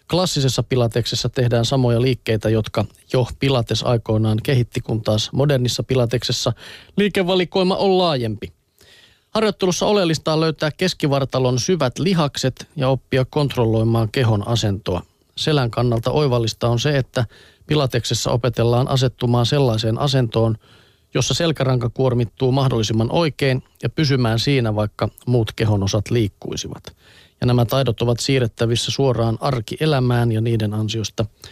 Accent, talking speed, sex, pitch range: native, 120 wpm, male, 115-145 Hz